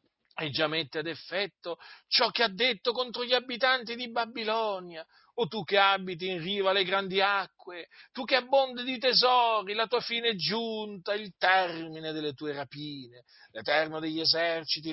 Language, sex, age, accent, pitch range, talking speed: Italian, male, 40-59, native, 150-220 Hz, 165 wpm